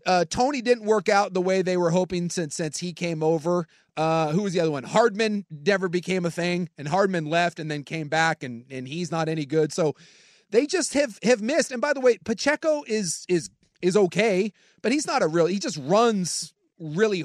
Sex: male